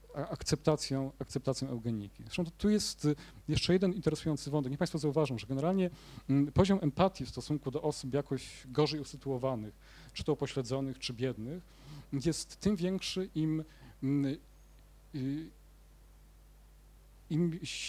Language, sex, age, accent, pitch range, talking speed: Polish, male, 40-59, native, 125-155 Hz, 115 wpm